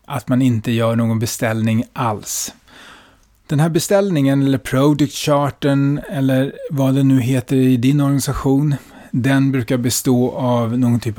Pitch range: 125-150 Hz